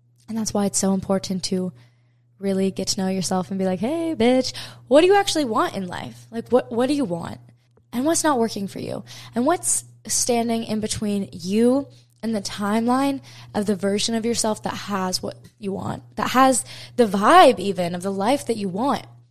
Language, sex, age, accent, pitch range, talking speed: English, female, 10-29, American, 175-210 Hz, 205 wpm